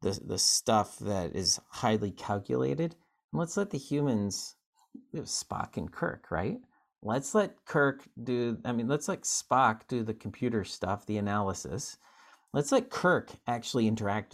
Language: English